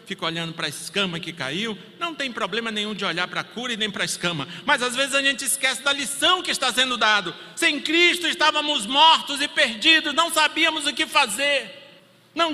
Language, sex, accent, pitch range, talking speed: Portuguese, male, Brazilian, 190-280 Hz, 215 wpm